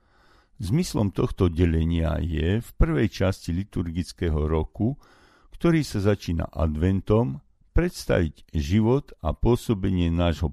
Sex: male